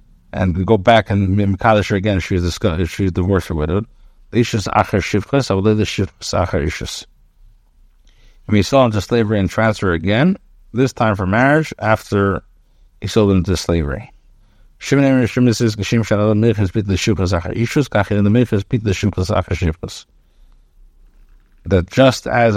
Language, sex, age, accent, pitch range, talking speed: English, male, 50-69, American, 90-115 Hz, 85 wpm